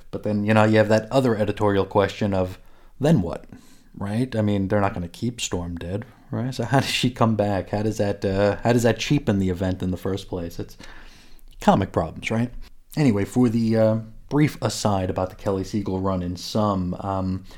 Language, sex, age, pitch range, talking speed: English, male, 30-49, 100-115 Hz, 210 wpm